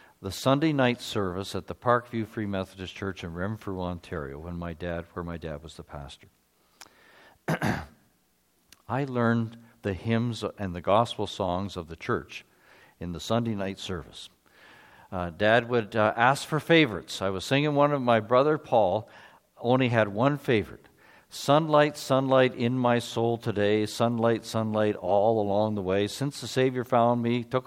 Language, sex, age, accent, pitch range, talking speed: English, male, 50-69, American, 100-125 Hz, 165 wpm